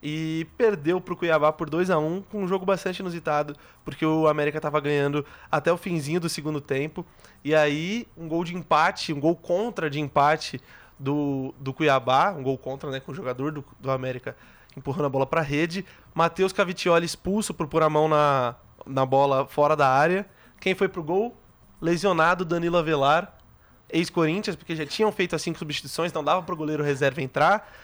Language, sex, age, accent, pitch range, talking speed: Portuguese, male, 20-39, Brazilian, 145-180 Hz, 185 wpm